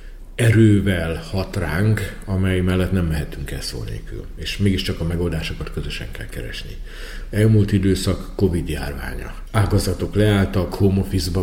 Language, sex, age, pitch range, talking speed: Hungarian, male, 50-69, 80-100 Hz, 120 wpm